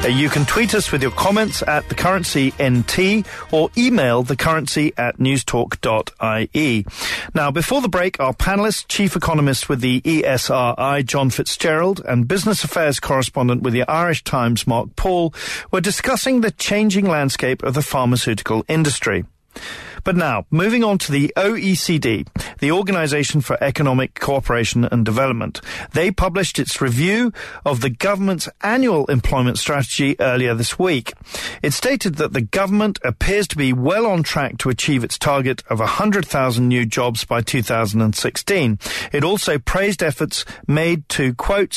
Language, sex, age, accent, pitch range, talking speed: English, male, 40-59, British, 125-185 Hz, 145 wpm